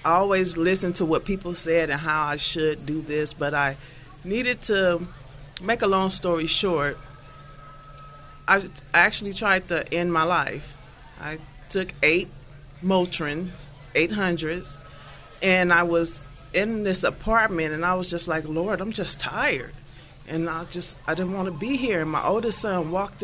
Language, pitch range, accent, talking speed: English, 150-200 Hz, American, 170 wpm